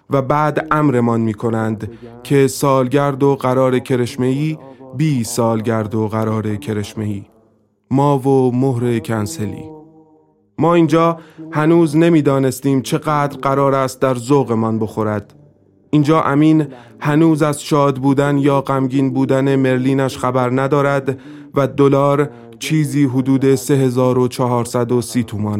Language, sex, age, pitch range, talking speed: Persian, male, 30-49, 125-150 Hz, 110 wpm